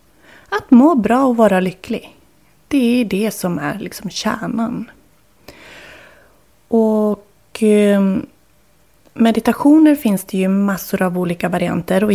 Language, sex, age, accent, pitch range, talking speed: Swedish, female, 30-49, native, 185-235 Hz, 115 wpm